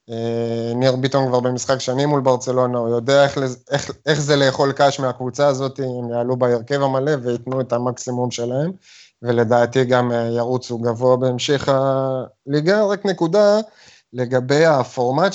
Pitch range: 125-155 Hz